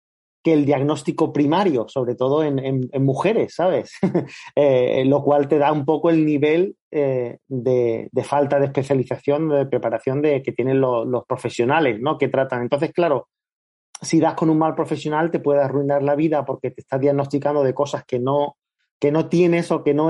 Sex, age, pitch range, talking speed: male, 30-49, 130-155 Hz, 190 wpm